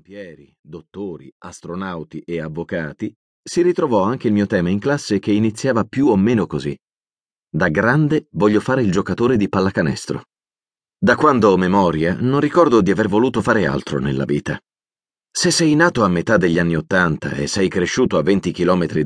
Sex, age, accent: male, 40-59, native